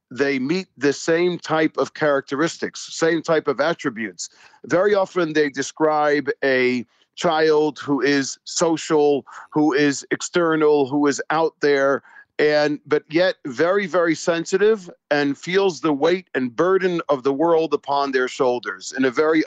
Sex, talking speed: male, 150 wpm